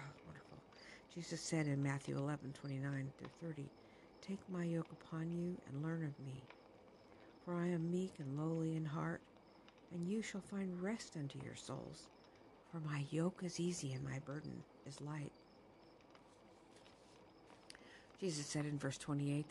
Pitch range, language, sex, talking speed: 140-175 Hz, English, female, 145 wpm